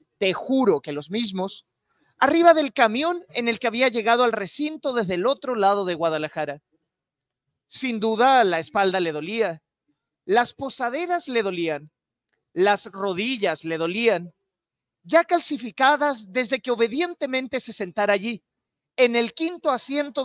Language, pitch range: Spanish, 175-260 Hz